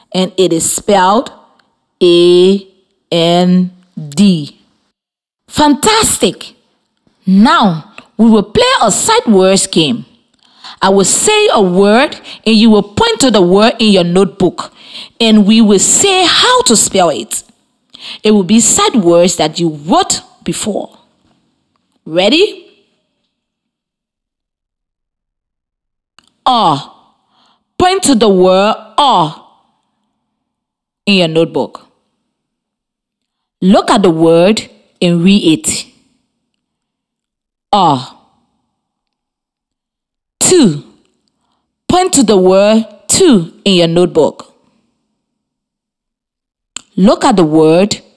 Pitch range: 185-240 Hz